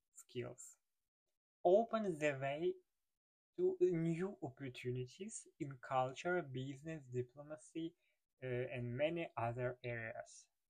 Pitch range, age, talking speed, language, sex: 135-185 Hz, 20-39, 90 wpm, Ukrainian, male